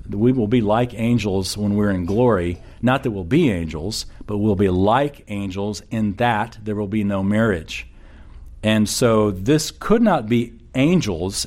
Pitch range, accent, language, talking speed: 90-120 Hz, American, English, 175 wpm